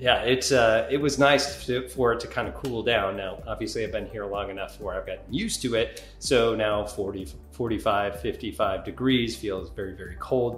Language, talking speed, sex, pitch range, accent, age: English, 210 wpm, male, 105-135 Hz, American, 40-59